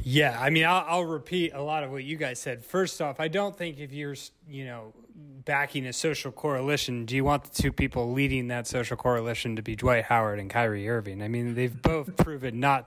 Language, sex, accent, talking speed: English, male, American, 230 wpm